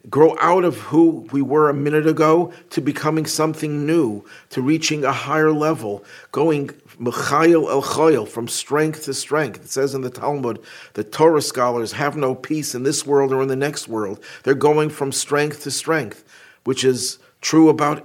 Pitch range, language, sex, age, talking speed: 120-150 Hz, English, male, 50-69, 175 wpm